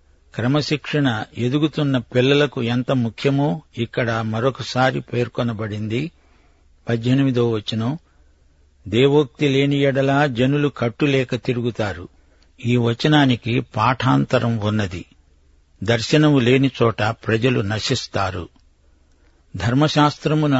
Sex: male